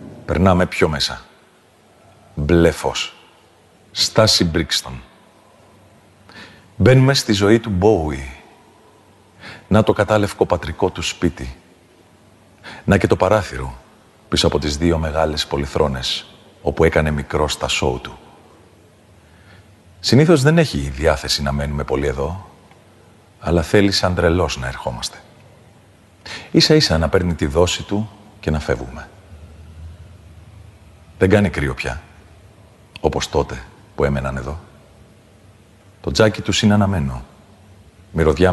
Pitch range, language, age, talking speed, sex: 80-105 Hz, Greek, 40-59, 115 wpm, male